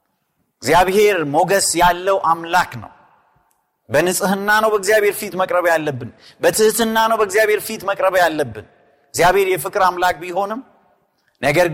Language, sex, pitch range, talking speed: Amharic, male, 150-215 Hz, 110 wpm